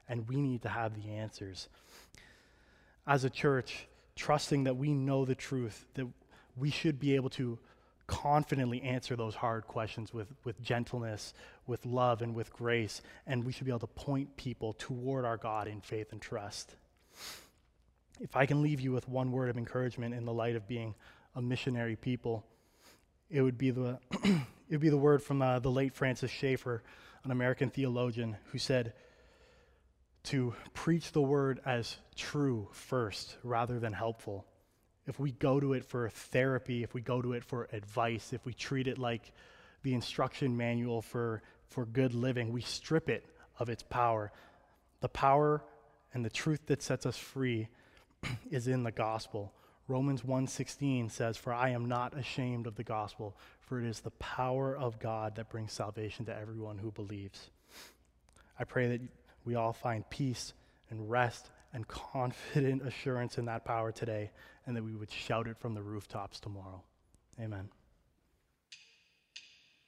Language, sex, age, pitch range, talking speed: English, male, 20-39, 110-130 Hz, 165 wpm